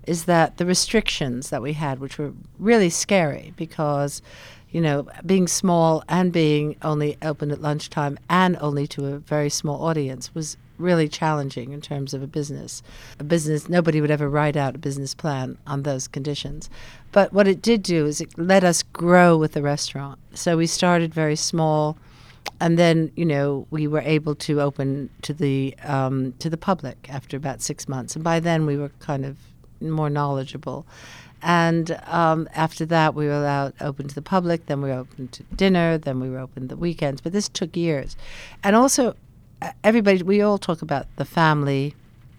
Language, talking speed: English, 185 wpm